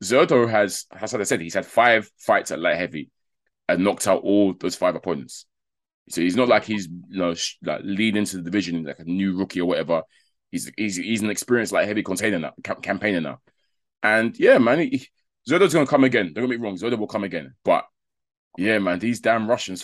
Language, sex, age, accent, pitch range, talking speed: English, male, 20-39, British, 90-110 Hz, 220 wpm